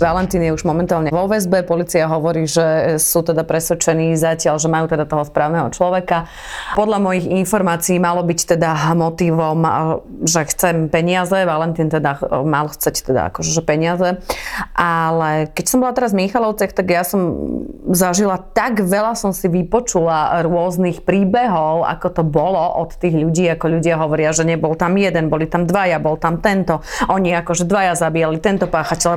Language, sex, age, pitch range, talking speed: Slovak, female, 30-49, 165-185 Hz, 165 wpm